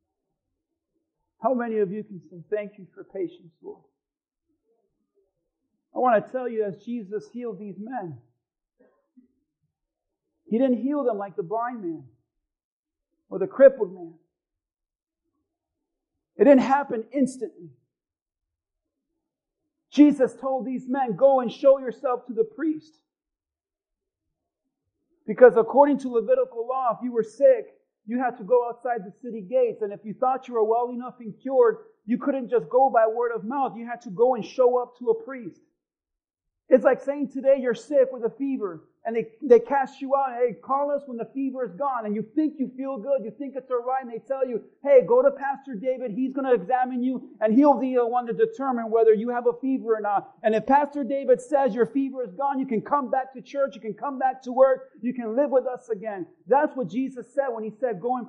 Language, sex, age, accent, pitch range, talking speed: English, male, 50-69, American, 225-280 Hz, 195 wpm